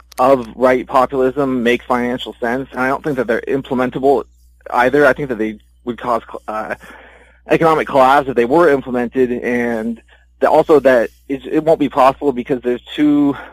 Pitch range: 120-145 Hz